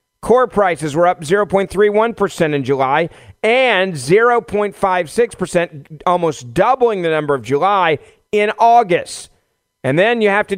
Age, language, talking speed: 40-59, English, 125 wpm